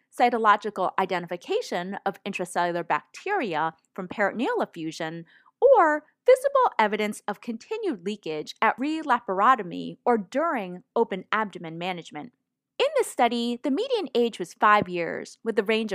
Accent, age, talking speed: American, 30-49, 125 wpm